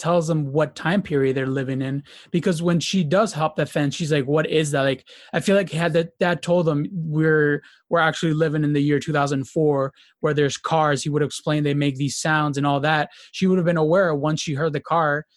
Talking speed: 235 wpm